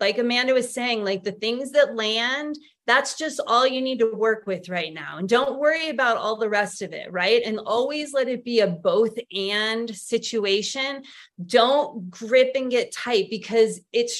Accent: American